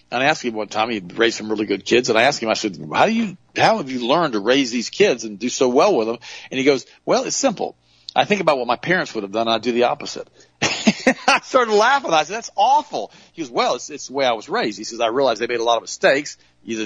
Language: English